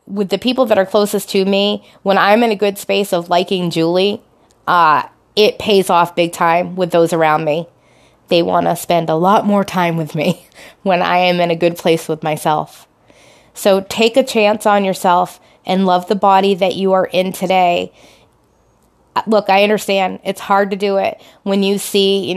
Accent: American